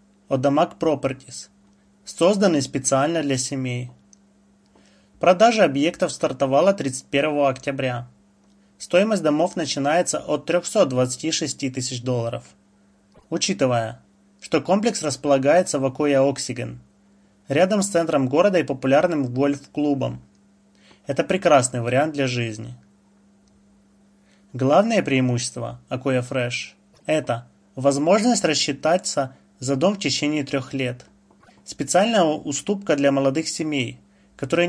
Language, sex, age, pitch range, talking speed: Russian, male, 20-39, 120-165 Hz, 100 wpm